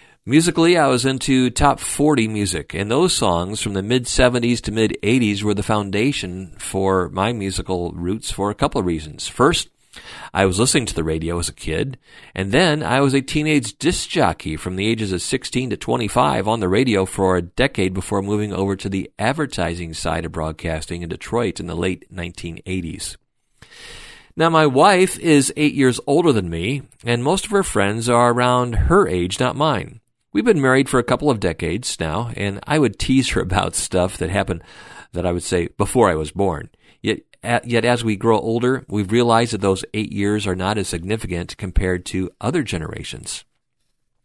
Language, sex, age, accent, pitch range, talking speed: English, male, 40-59, American, 95-125 Hz, 190 wpm